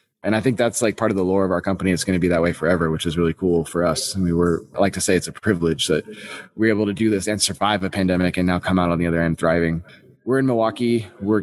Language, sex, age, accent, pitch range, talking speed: English, male, 20-39, American, 95-110 Hz, 305 wpm